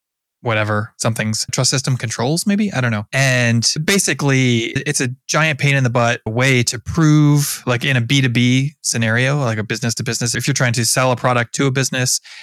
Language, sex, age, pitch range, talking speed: English, male, 20-39, 110-135 Hz, 200 wpm